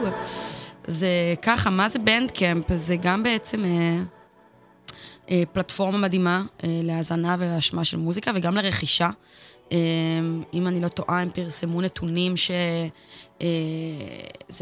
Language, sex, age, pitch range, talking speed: Hebrew, female, 20-39, 170-200 Hz, 115 wpm